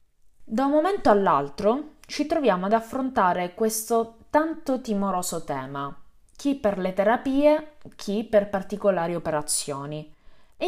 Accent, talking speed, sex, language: native, 120 wpm, female, Italian